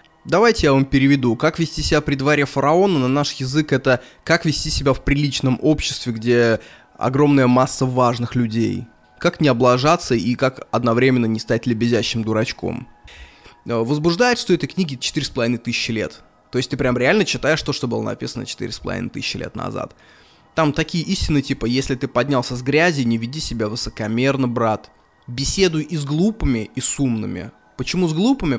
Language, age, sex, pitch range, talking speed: Russian, 20-39, male, 120-155 Hz, 175 wpm